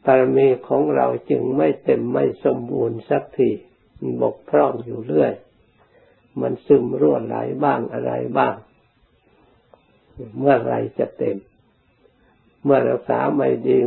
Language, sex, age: Thai, male, 60-79